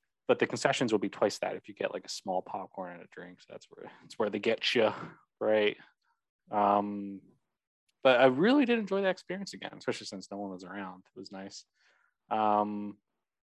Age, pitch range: 20-39, 105-130 Hz